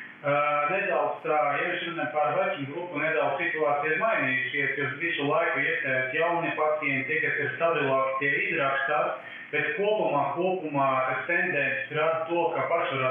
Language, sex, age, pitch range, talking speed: English, male, 30-49, 140-165 Hz, 130 wpm